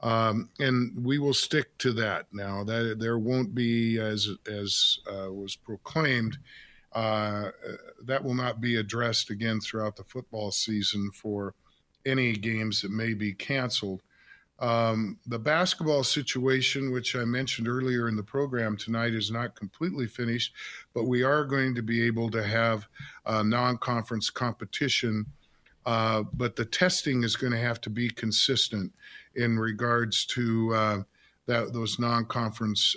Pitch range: 110-130 Hz